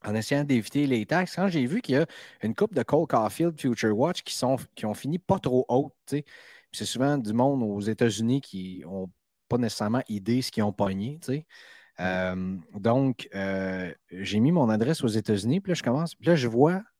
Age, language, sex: 30-49, French, male